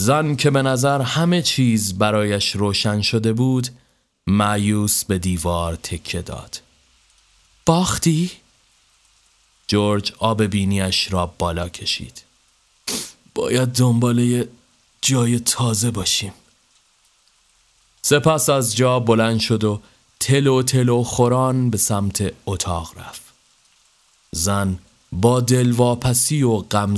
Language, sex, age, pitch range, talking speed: Persian, male, 30-49, 100-125 Hz, 100 wpm